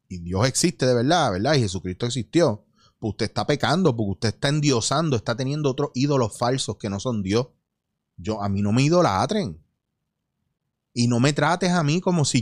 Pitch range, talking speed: 115-160 Hz, 195 wpm